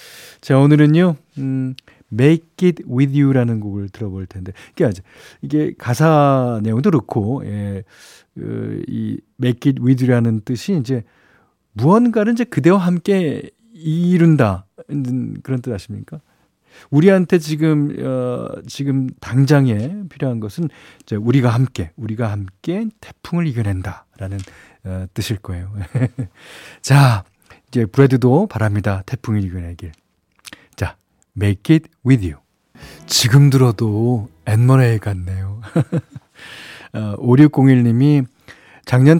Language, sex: Korean, male